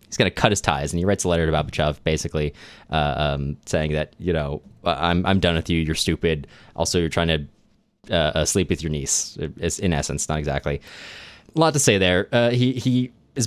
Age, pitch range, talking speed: 20-39, 75-95 Hz, 225 wpm